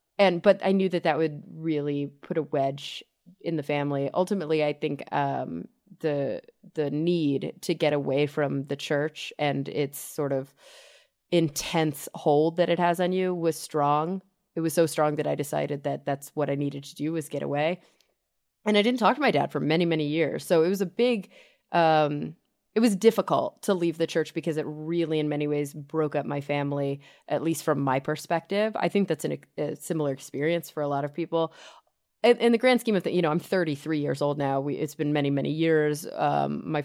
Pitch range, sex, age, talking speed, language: 145-170 Hz, female, 20-39, 210 wpm, English